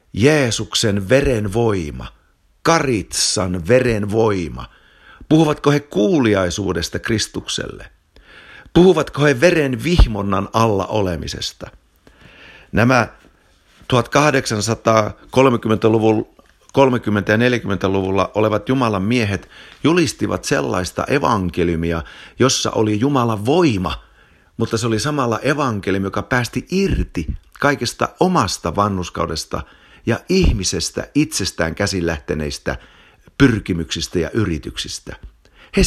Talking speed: 85 wpm